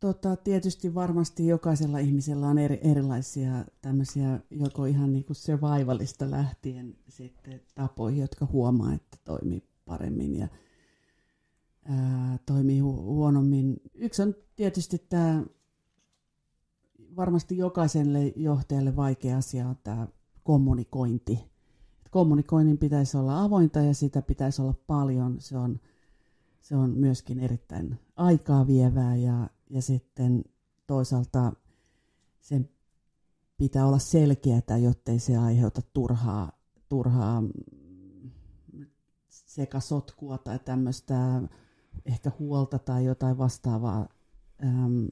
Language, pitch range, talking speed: Finnish, 125-145 Hz, 95 wpm